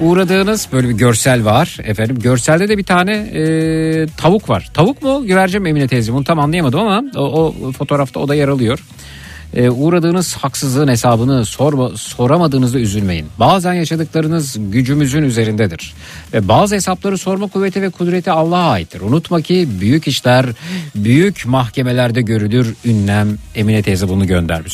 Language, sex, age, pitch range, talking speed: Turkish, male, 50-69, 115-165 Hz, 150 wpm